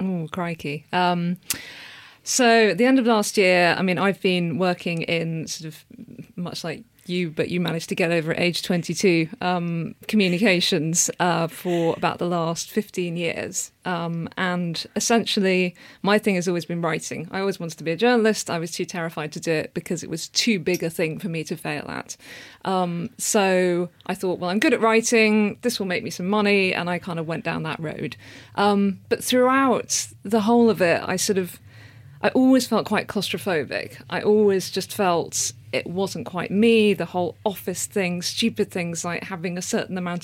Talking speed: 195 wpm